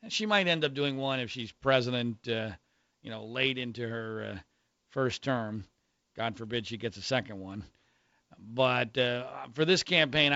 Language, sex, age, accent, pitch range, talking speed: English, male, 40-59, American, 120-150 Hz, 175 wpm